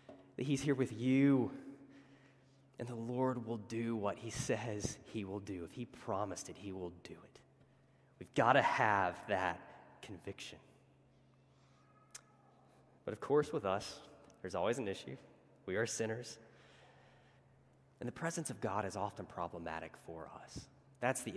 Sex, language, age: male, English, 20-39